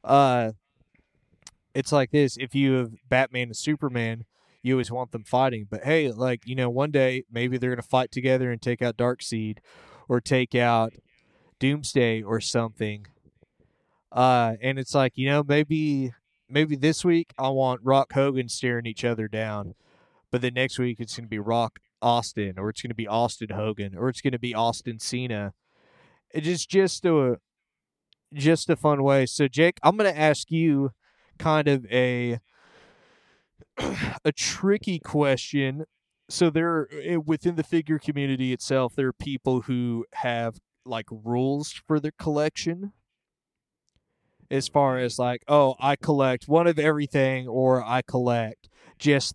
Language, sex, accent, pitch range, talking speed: English, male, American, 120-145 Hz, 155 wpm